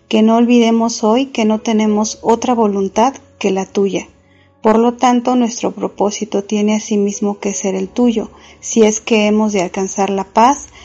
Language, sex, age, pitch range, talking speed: Spanish, female, 40-59, 190-225 Hz, 170 wpm